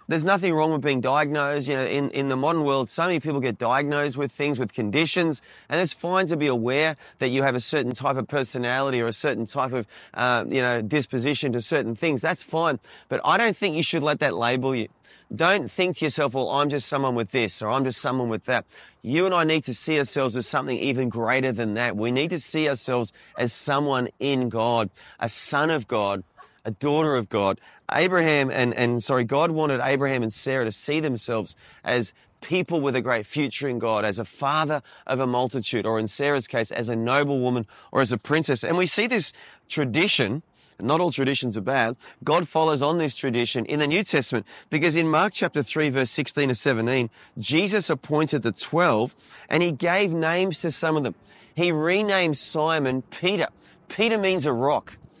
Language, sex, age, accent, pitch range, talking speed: English, male, 30-49, Australian, 125-155 Hz, 210 wpm